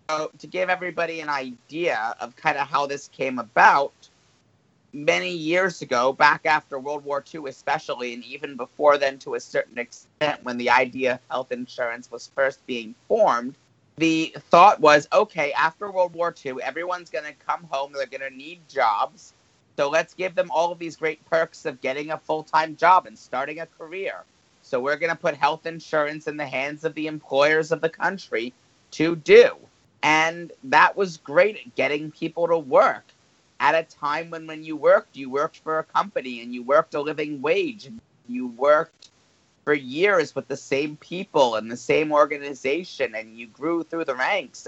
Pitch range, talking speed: 135-165 Hz, 185 wpm